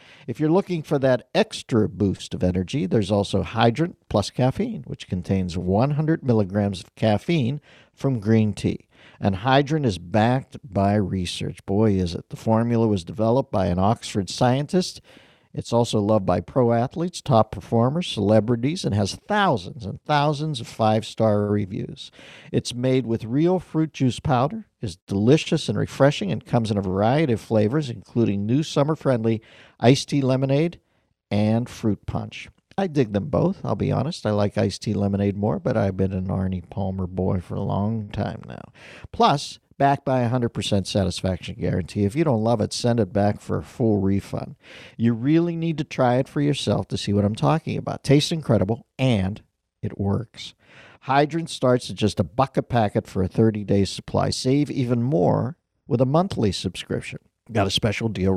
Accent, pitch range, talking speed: American, 100-135 Hz, 175 wpm